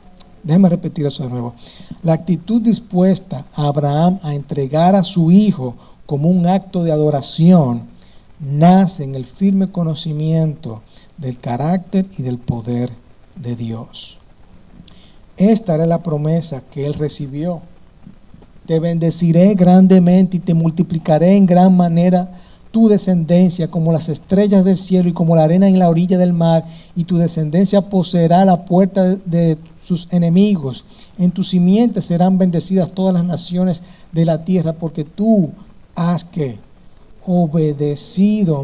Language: Spanish